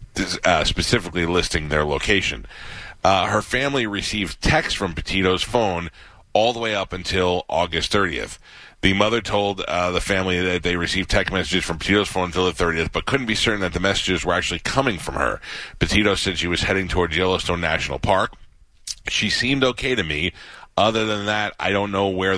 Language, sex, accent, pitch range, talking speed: English, male, American, 85-100 Hz, 190 wpm